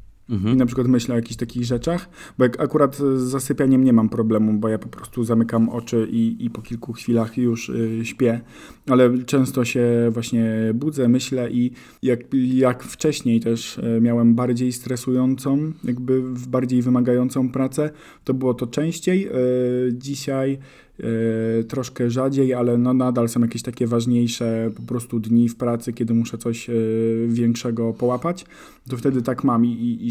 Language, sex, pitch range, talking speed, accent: Polish, male, 115-130 Hz, 160 wpm, native